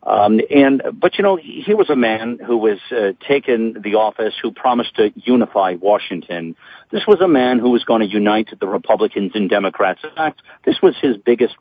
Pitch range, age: 115-175 Hz, 50-69